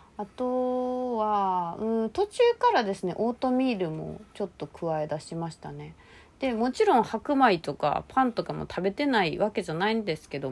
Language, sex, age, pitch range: Japanese, female, 30-49, 165-230 Hz